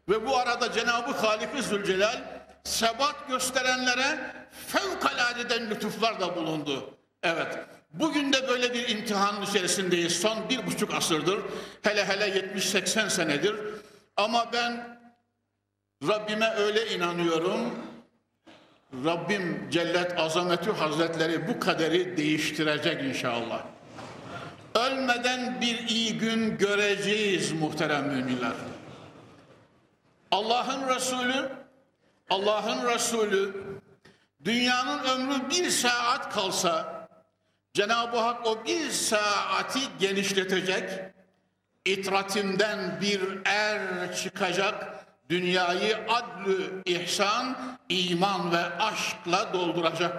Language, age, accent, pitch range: Turkish, 60-79, native, 180-240 Hz